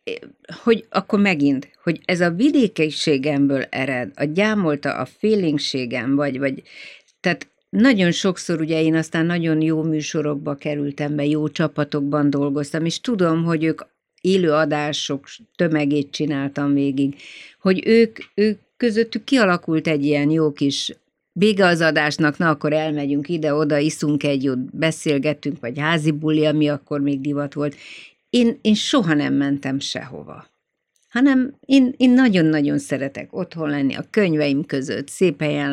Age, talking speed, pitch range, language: 50-69, 135 wpm, 145-180 Hz, Hungarian